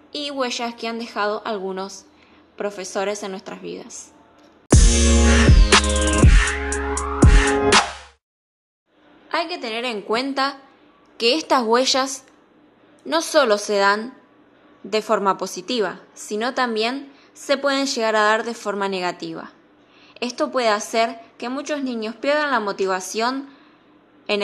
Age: 10-29